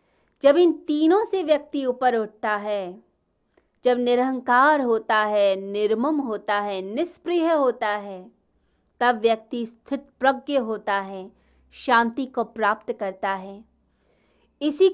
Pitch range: 210-285 Hz